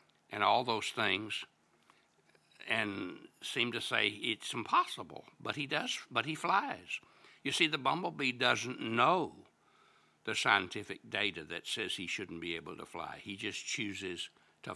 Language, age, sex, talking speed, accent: English, 60-79, male, 150 wpm, American